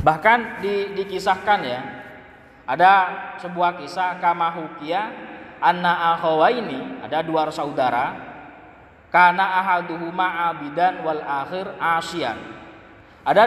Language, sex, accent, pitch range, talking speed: Indonesian, male, native, 155-190 Hz, 90 wpm